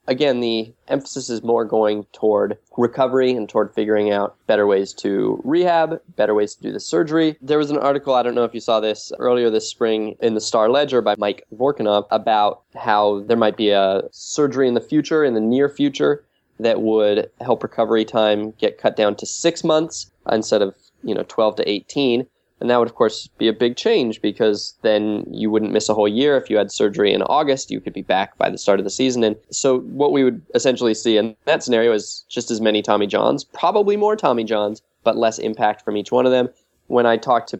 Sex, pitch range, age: male, 105-130 Hz, 20-39